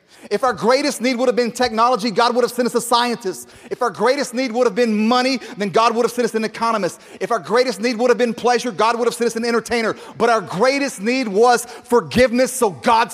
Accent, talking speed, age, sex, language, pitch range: American, 245 wpm, 30-49, male, English, 205-255 Hz